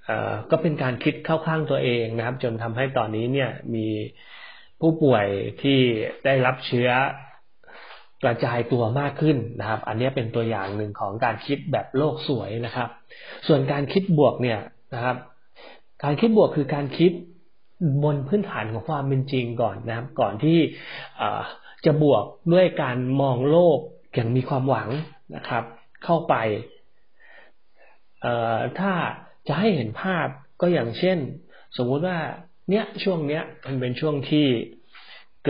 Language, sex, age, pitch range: Thai, male, 30-49, 120-155 Hz